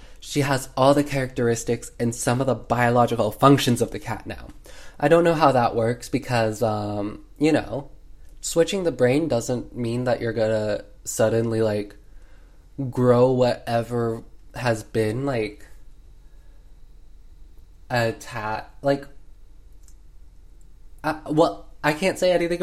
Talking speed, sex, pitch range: 125 wpm, male, 105-140 Hz